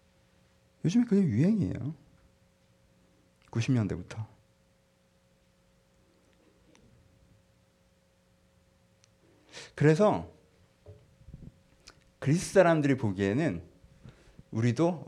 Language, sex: Korean, male